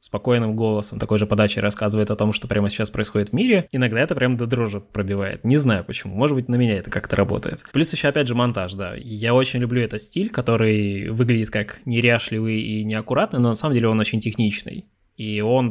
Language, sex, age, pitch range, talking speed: Russian, male, 20-39, 105-130 Hz, 215 wpm